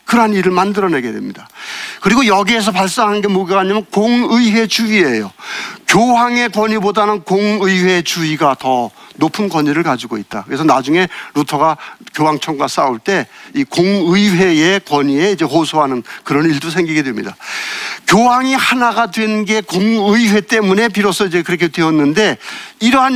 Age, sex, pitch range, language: 50-69, male, 160-220 Hz, Korean